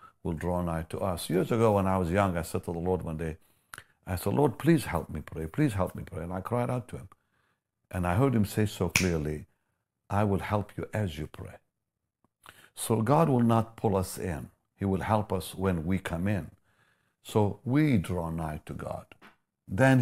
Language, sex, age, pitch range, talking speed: English, male, 60-79, 85-115 Hz, 215 wpm